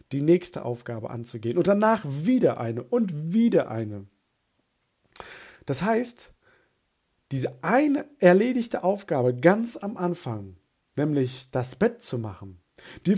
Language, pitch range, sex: German, 125-185 Hz, male